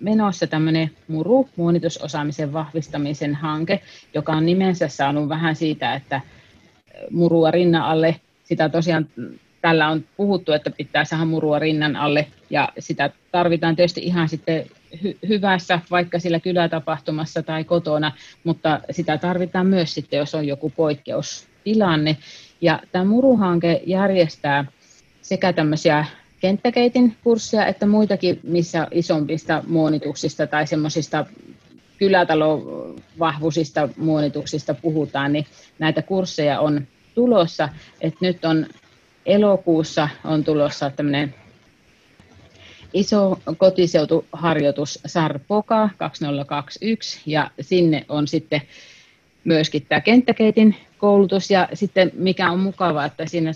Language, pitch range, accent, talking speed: Finnish, 150-180 Hz, native, 110 wpm